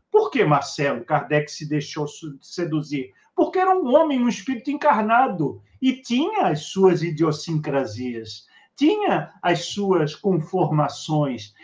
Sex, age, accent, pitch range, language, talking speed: male, 50-69, Brazilian, 155-245 Hz, Portuguese, 120 wpm